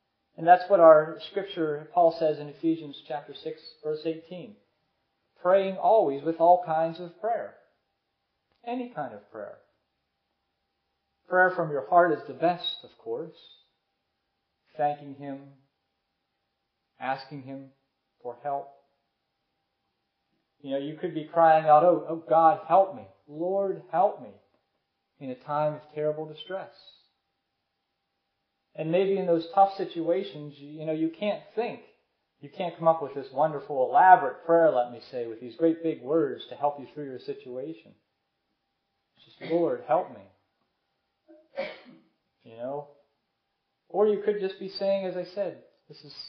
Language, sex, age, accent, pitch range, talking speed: English, male, 40-59, American, 145-180 Hz, 145 wpm